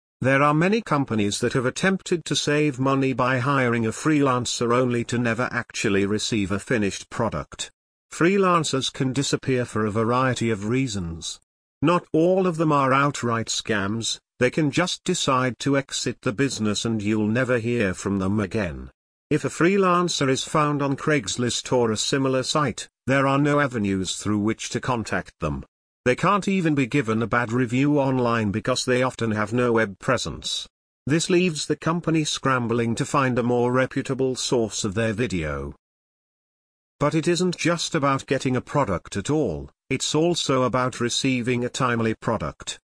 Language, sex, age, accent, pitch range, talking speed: English, male, 50-69, British, 110-145 Hz, 165 wpm